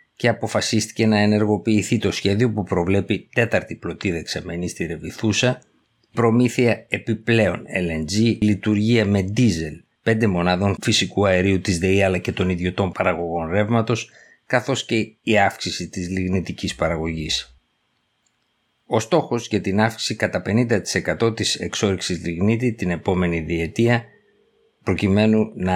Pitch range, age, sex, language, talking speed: 90-110 Hz, 50-69, male, Greek, 125 wpm